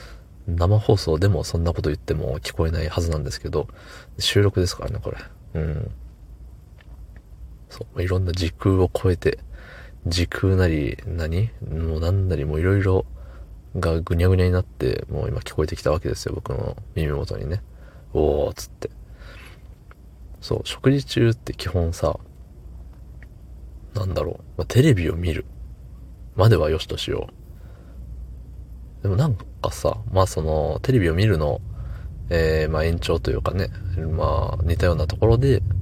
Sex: male